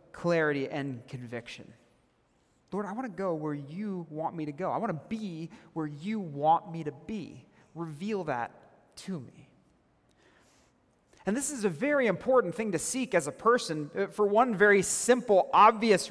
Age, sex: 30-49, male